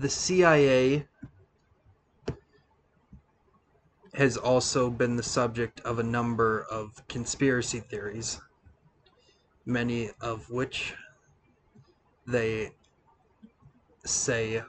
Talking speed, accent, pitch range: 75 wpm, American, 115-135 Hz